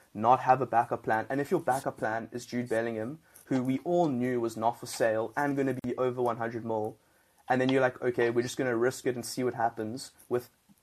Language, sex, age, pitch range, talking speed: English, male, 20-39, 110-125 Hz, 245 wpm